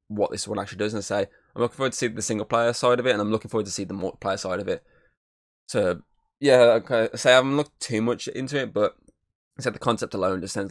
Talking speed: 280 wpm